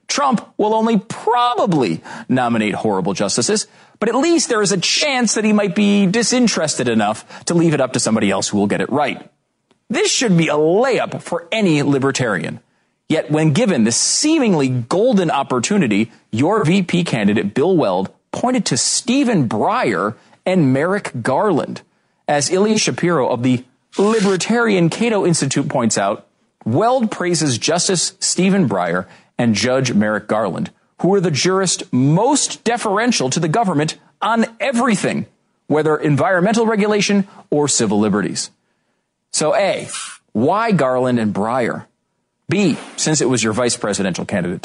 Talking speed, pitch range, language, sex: 145 wpm, 130-215 Hz, English, male